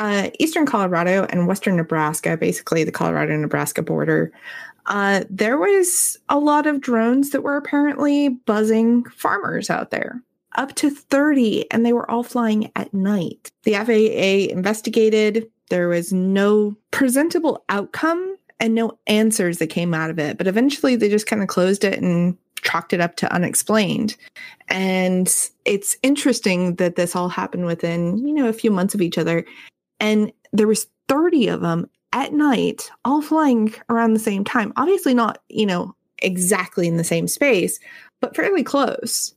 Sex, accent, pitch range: female, American, 190-260 Hz